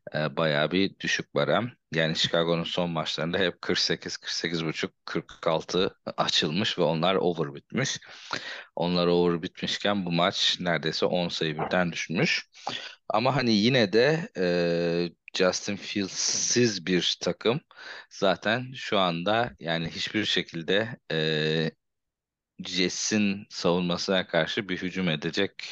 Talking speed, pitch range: 105 wpm, 80-95 Hz